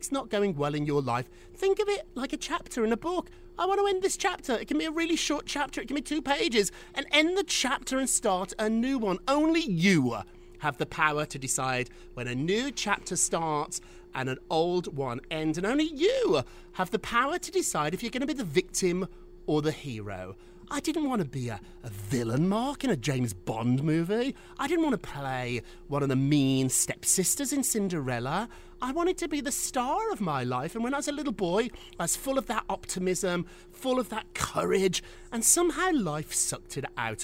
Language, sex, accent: English, male, British